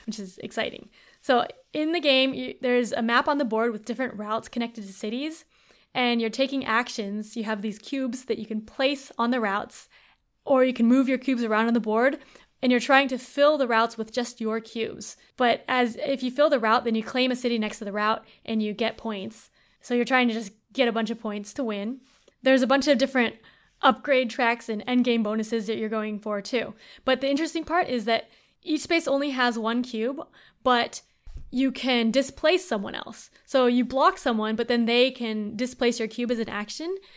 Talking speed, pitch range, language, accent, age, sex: 220 wpm, 225-260 Hz, English, American, 20-39, female